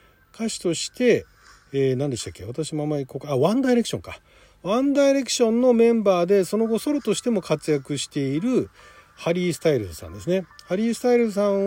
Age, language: 40-59, Japanese